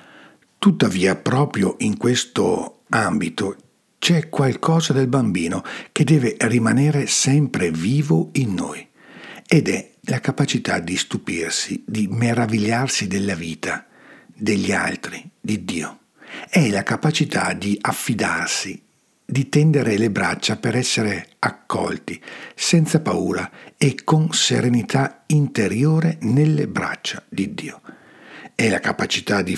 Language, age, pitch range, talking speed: Italian, 60-79, 110-155 Hz, 115 wpm